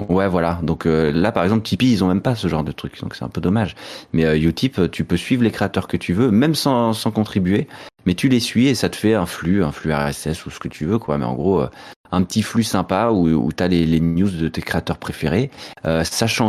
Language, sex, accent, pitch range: French, male, French, 80-100 Hz